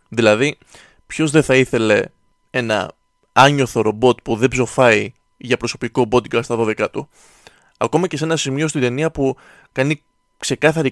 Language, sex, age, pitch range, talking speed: Greek, male, 20-39, 120-160 Hz, 150 wpm